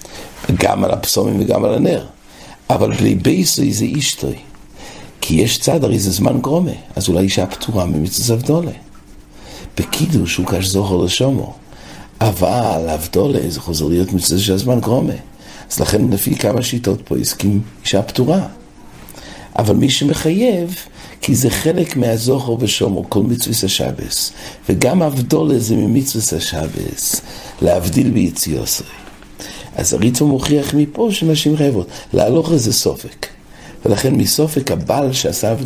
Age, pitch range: 60-79, 95-140 Hz